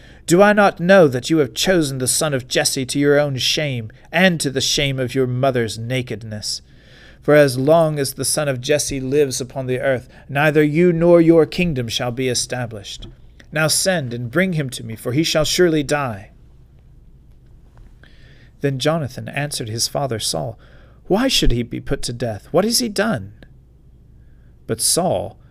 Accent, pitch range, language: American, 115-145 Hz, English